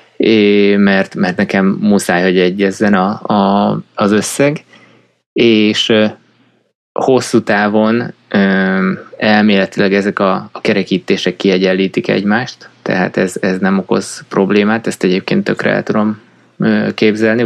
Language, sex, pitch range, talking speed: Hungarian, male, 95-110 Hz, 120 wpm